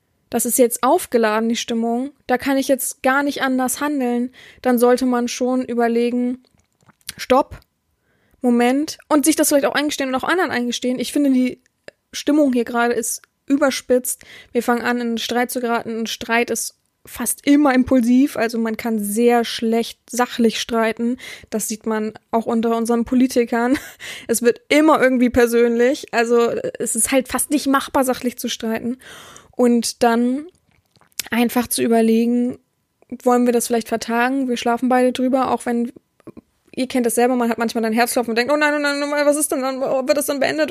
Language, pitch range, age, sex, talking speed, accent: German, 230-260 Hz, 20-39, female, 175 wpm, German